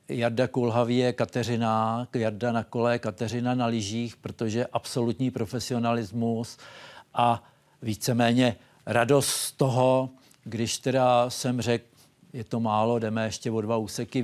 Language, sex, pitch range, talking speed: Czech, male, 115-135 Hz, 125 wpm